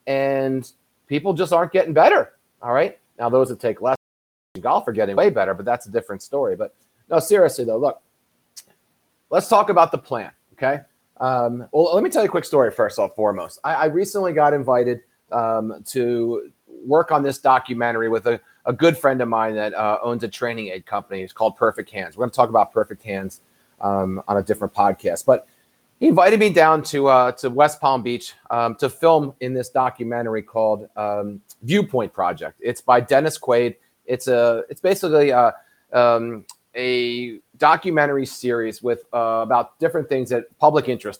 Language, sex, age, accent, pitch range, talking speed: English, male, 30-49, American, 115-140 Hz, 190 wpm